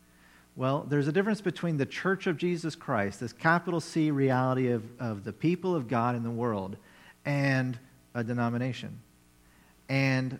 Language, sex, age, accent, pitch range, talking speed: English, male, 40-59, American, 100-145 Hz, 155 wpm